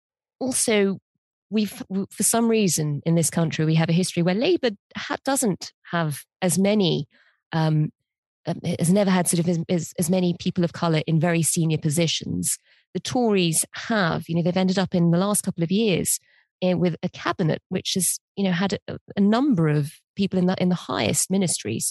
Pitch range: 160-200 Hz